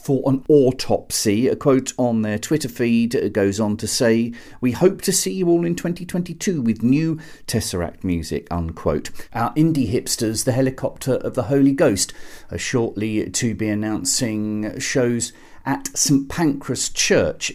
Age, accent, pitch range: 50-69, British, 105-165 Hz